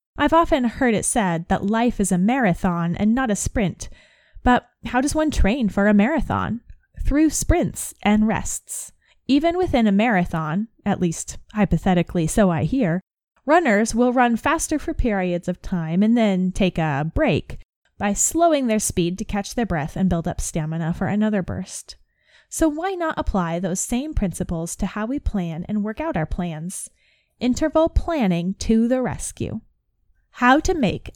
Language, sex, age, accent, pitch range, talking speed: English, female, 10-29, American, 185-255 Hz, 170 wpm